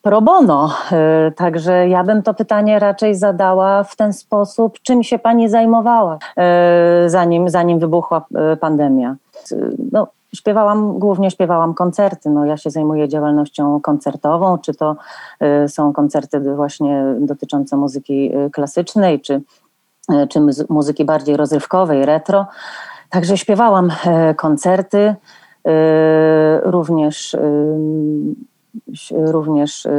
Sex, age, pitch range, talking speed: female, 30-49, 150-200 Hz, 100 wpm